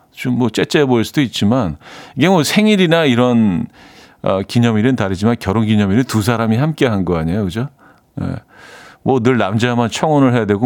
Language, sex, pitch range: Korean, male, 105-140 Hz